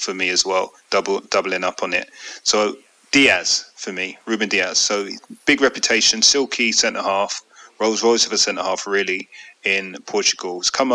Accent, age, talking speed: British, 30-49, 175 wpm